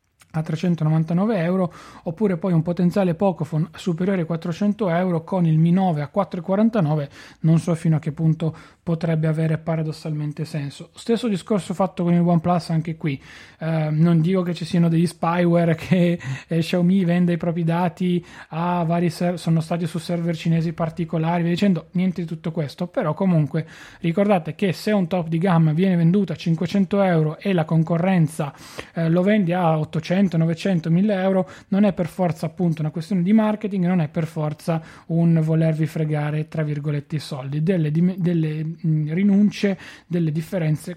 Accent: native